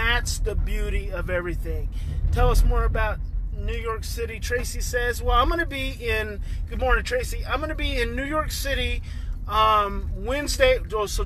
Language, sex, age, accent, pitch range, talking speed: English, male, 30-49, American, 180-225 Hz, 180 wpm